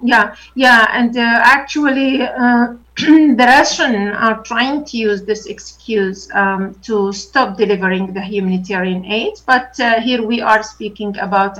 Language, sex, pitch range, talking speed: Arabic, female, 200-250 Hz, 145 wpm